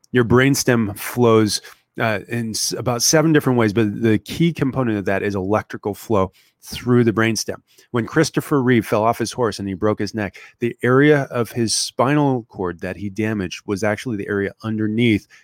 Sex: male